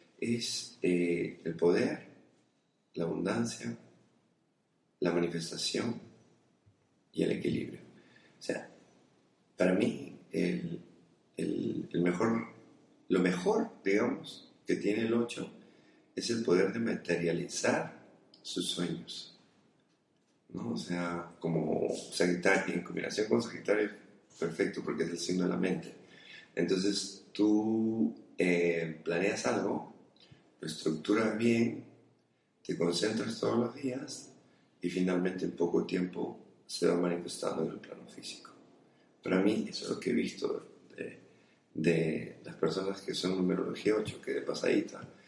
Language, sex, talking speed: Spanish, male, 125 wpm